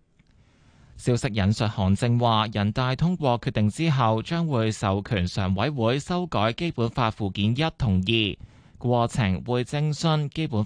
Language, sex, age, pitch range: Chinese, male, 20-39, 105-135 Hz